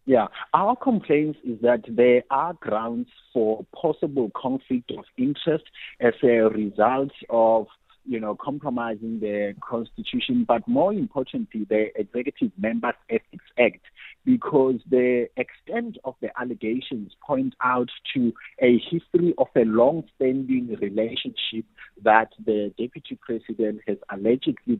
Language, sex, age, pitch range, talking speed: English, male, 50-69, 110-145 Hz, 125 wpm